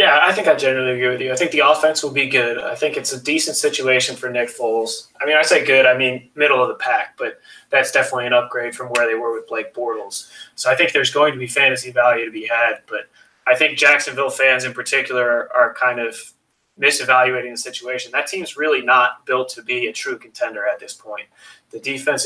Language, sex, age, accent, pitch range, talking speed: English, male, 20-39, American, 120-150 Hz, 235 wpm